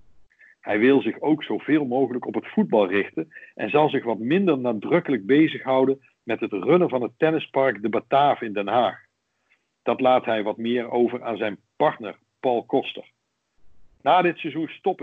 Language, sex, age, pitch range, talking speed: Dutch, male, 50-69, 120-160 Hz, 170 wpm